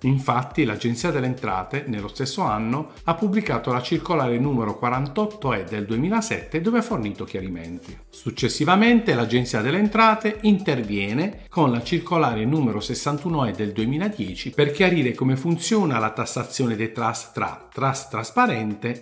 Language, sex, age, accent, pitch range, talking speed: Italian, male, 50-69, native, 115-180 Hz, 140 wpm